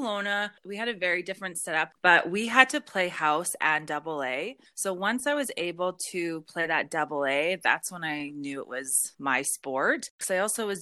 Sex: female